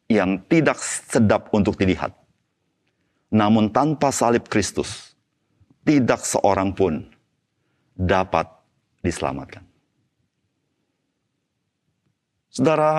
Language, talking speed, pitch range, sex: Indonesian, 70 wpm, 100-125 Hz, male